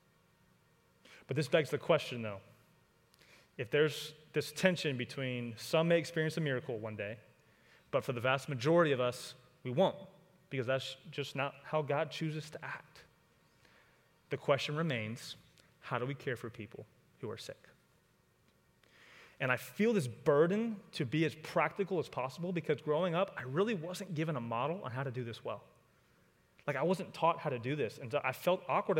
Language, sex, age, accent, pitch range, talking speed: English, male, 30-49, American, 130-170 Hz, 180 wpm